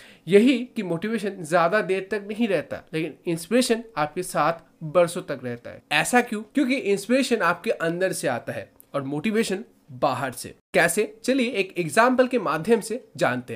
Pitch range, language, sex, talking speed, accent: 170-235 Hz, Hindi, male, 165 wpm, native